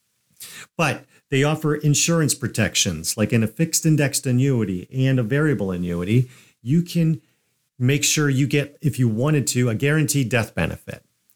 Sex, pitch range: male, 110-145 Hz